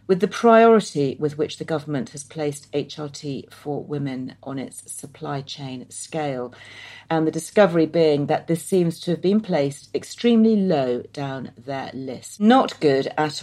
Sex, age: female, 40-59